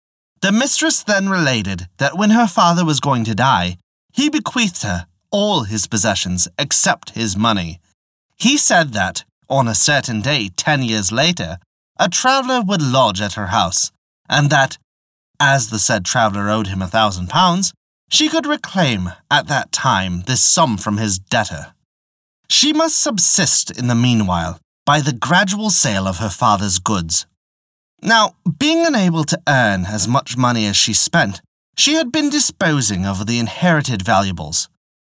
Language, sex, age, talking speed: English, male, 30-49, 160 wpm